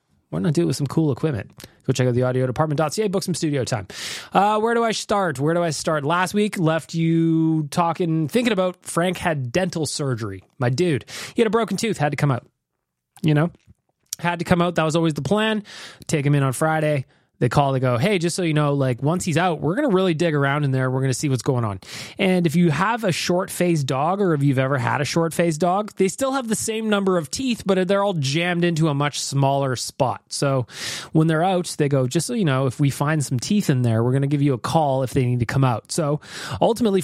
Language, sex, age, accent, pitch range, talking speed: English, male, 20-39, American, 135-185 Hz, 255 wpm